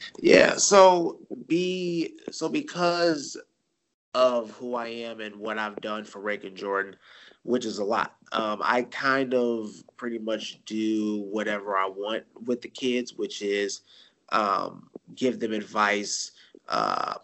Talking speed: 145 wpm